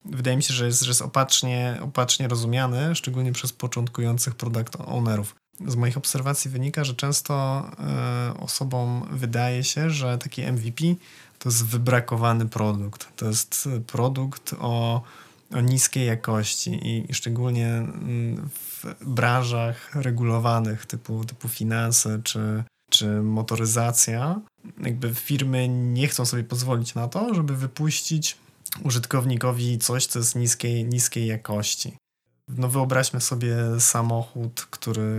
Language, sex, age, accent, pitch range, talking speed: Polish, male, 20-39, native, 110-130 Hz, 120 wpm